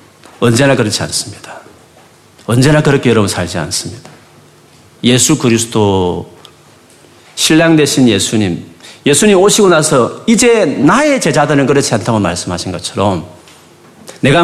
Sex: male